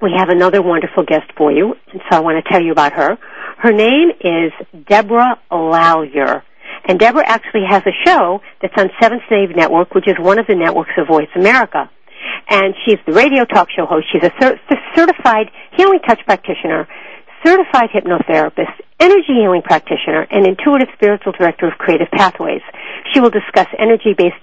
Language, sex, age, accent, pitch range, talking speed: English, female, 60-79, American, 165-225 Hz, 170 wpm